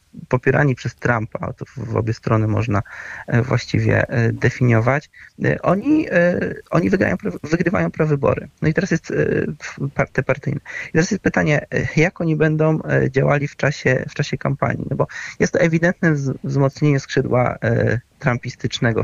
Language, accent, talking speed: Polish, native, 130 wpm